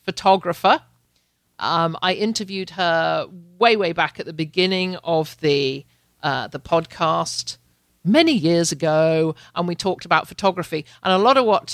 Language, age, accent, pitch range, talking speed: English, 50-69, British, 160-210 Hz, 150 wpm